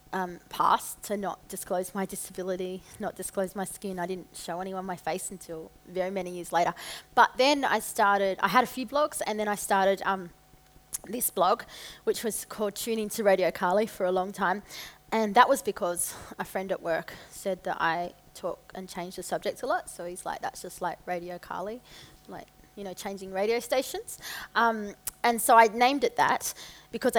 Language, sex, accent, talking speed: English, female, Australian, 195 wpm